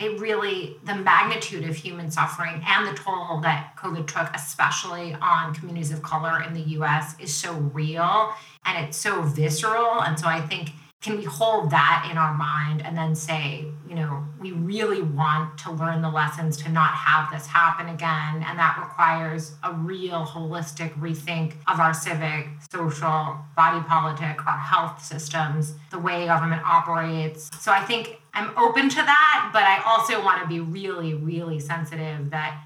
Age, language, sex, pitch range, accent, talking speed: 30-49, English, female, 155-185 Hz, American, 175 wpm